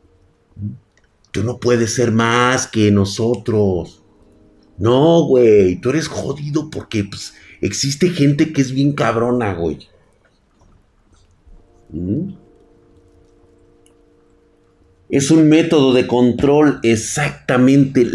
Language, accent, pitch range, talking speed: Spanish, Mexican, 100-140 Hz, 85 wpm